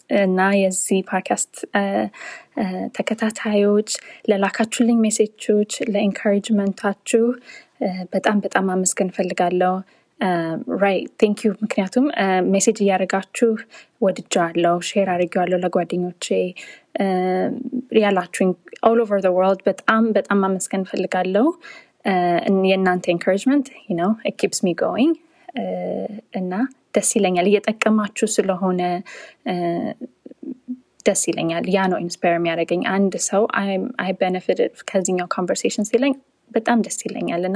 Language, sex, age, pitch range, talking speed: English, female, 20-39, 185-235 Hz, 100 wpm